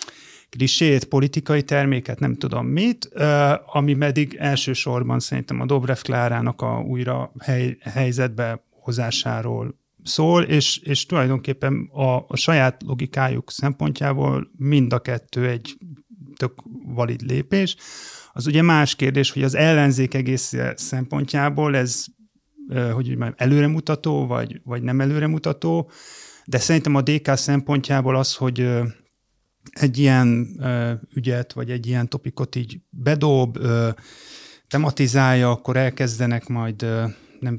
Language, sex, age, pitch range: Hungarian, male, 30-49, 120-140 Hz